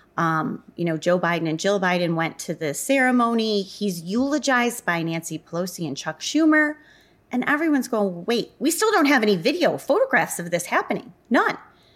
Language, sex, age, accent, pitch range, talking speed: English, female, 30-49, American, 170-240 Hz, 175 wpm